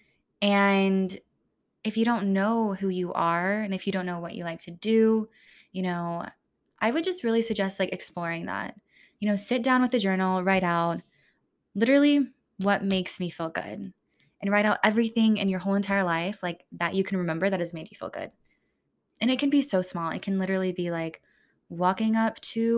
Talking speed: 205 wpm